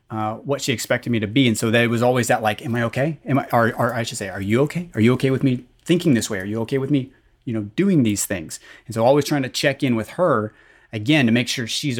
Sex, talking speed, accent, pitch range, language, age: male, 285 wpm, American, 110-130 Hz, English, 30-49